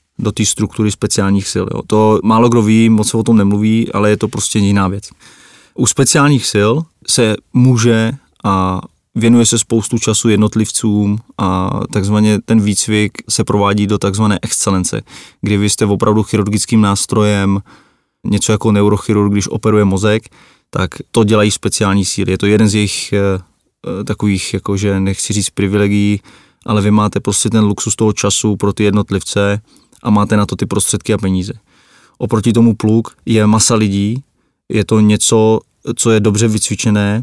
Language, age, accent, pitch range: Czech, 20-39, native, 100-110 Hz